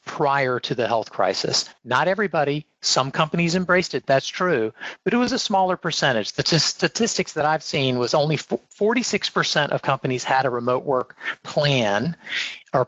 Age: 50-69